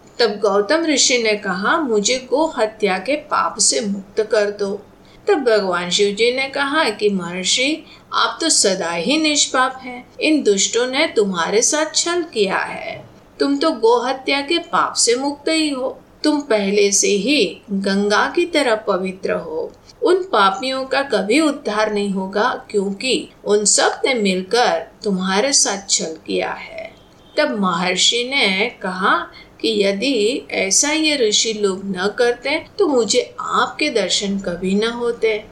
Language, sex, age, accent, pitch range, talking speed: Hindi, female, 50-69, native, 200-275 Hz, 150 wpm